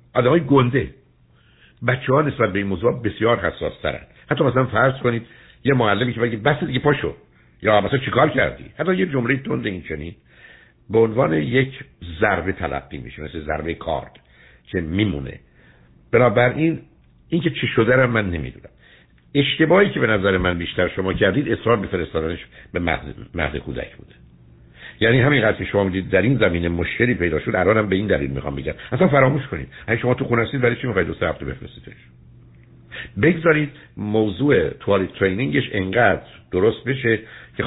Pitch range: 85-125 Hz